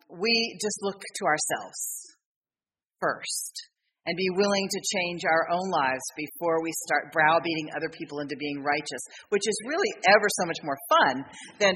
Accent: American